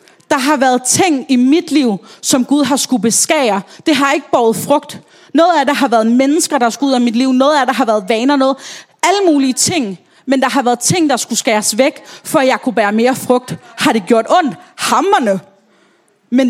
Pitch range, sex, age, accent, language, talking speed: 220-275 Hz, female, 30-49, native, Danish, 220 wpm